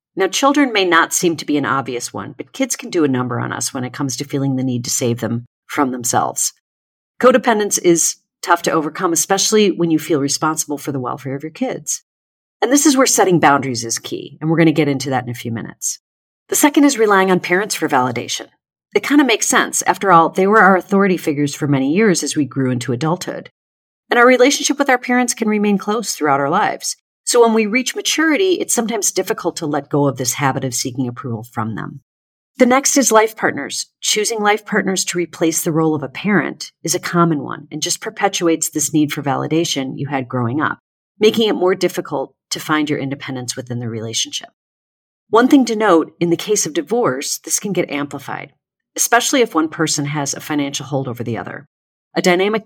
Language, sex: English, female